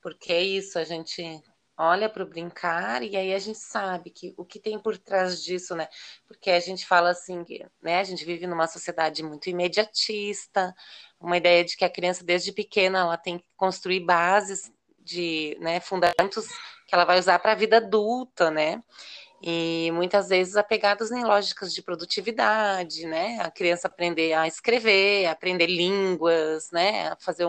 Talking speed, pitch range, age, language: 165 wpm, 170-200 Hz, 20-39, Portuguese